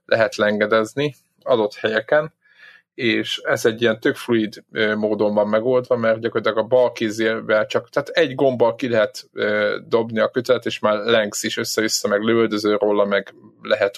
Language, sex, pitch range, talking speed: Hungarian, male, 110-140 Hz, 160 wpm